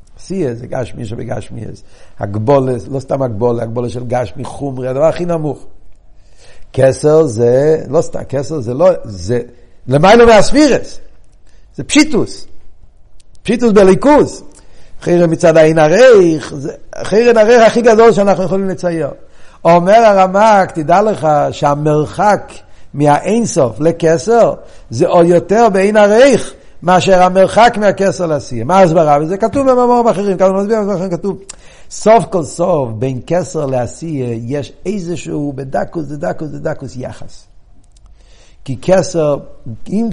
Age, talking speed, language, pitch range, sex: 60-79, 135 wpm, Hebrew, 135-195 Hz, male